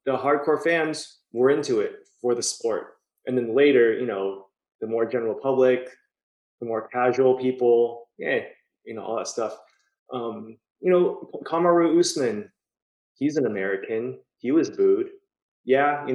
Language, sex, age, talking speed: English, male, 20-39, 150 wpm